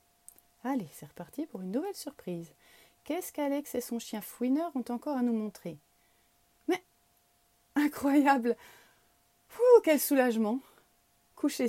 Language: French